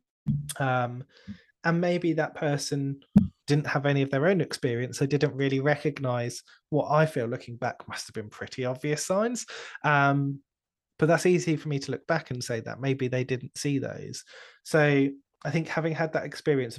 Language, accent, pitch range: English, British, 125-145 Hz